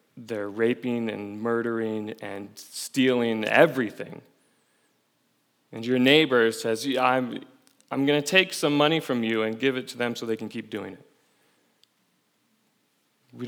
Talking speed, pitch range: 145 wpm, 110-140 Hz